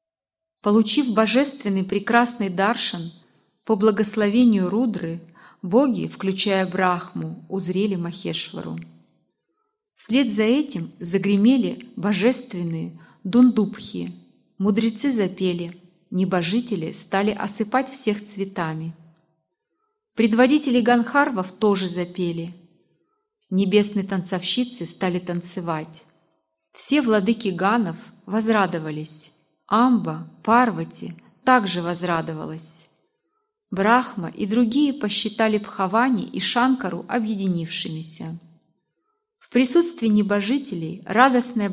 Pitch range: 175-240 Hz